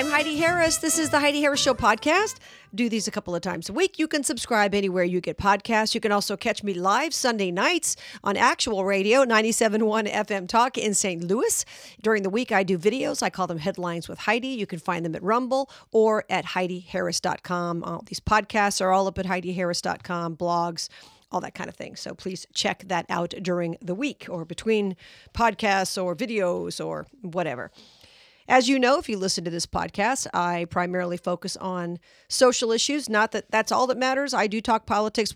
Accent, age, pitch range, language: American, 50-69, 180-225 Hz, English